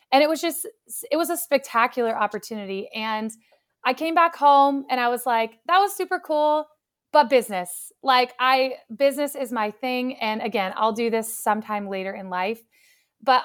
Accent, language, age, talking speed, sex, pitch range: American, English, 20-39, 180 wpm, female, 220-275 Hz